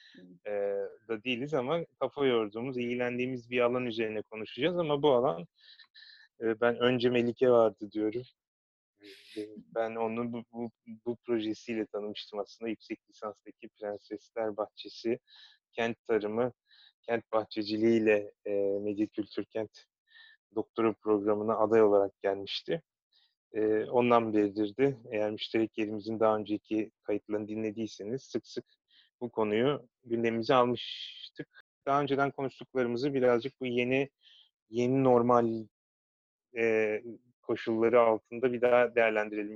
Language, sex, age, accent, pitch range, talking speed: Turkish, male, 30-49, native, 110-140 Hz, 110 wpm